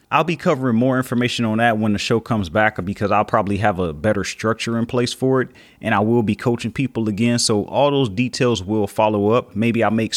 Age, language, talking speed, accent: 30-49, English, 235 wpm, American